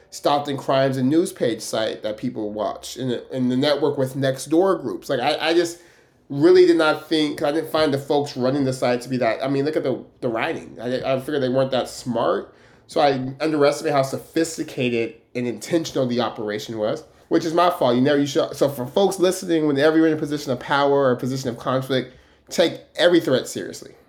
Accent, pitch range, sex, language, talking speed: American, 130-160 Hz, male, English, 225 wpm